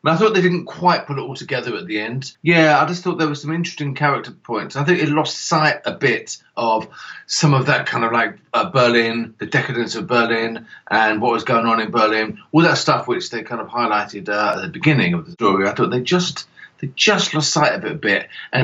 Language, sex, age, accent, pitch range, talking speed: English, male, 40-59, British, 120-160 Hz, 250 wpm